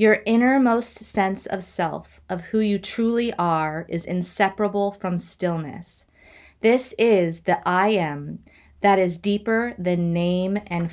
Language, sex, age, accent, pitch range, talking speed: English, female, 20-39, American, 175-215 Hz, 135 wpm